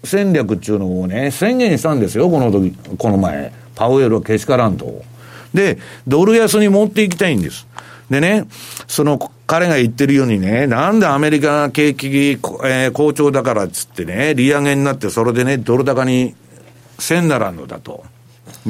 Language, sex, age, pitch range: Japanese, male, 60-79, 110-175 Hz